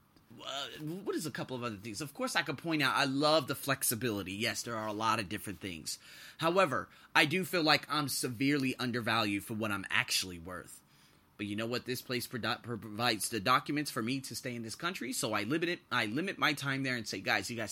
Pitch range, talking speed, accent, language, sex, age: 110-150 Hz, 240 wpm, American, English, male, 30-49